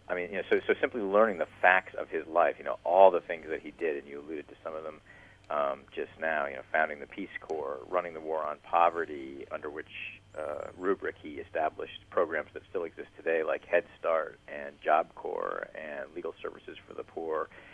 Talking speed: 220 wpm